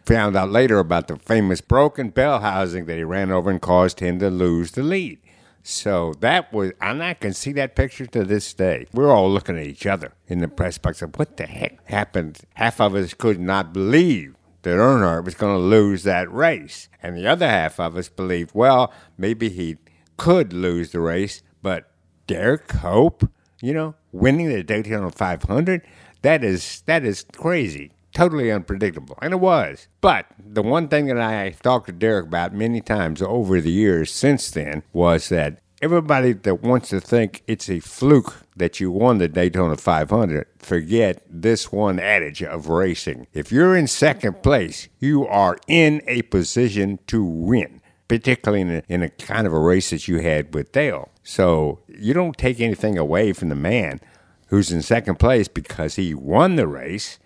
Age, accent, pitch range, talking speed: 60-79, American, 85-120 Hz, 185 wpm